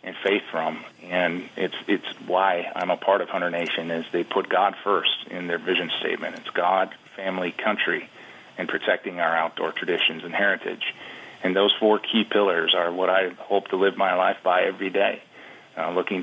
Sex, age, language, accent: male, 30-49, English, American